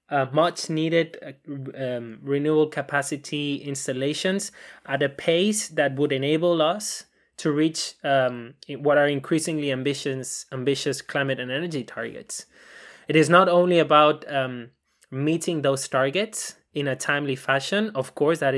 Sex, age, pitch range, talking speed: male, 20-39, 135-165 Hz, 135 wpm